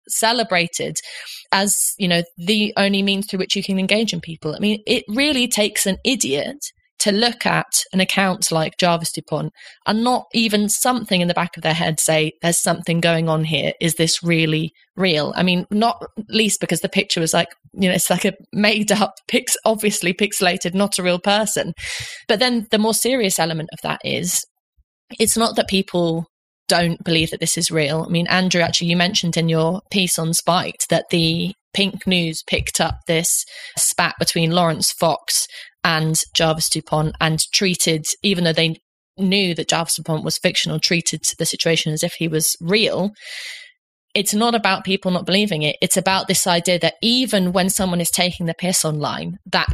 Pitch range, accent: 165-200 Hz, British